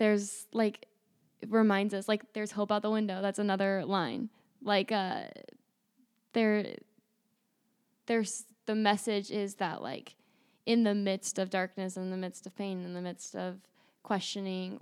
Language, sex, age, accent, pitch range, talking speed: English, female, 10-29, American, 195-220 Hz, 150 wpm